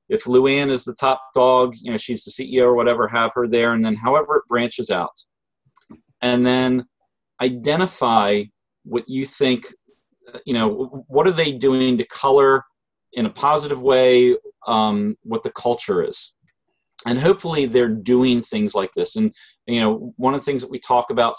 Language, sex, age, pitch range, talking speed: English, male, 30-49, 115-160 Hz, 175 wpm